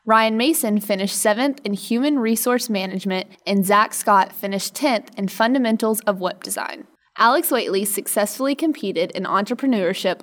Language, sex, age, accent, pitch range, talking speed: English, female, 20-39, American, 190-235 Hz, 140 wpm